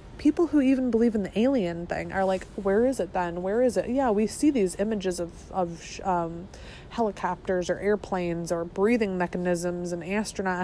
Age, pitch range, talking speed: 20-39, 185-225 Hz, 185 wpm